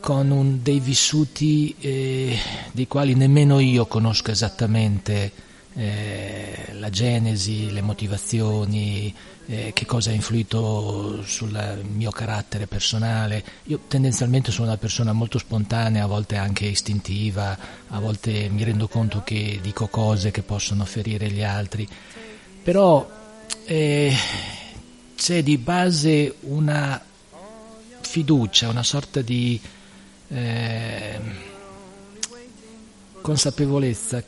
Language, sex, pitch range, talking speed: Italian, male, 105-145 Hz, 105 wpm